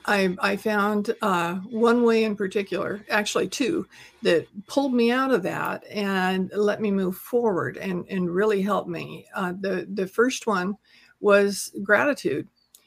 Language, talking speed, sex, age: English, 155 wpm, female, 50-69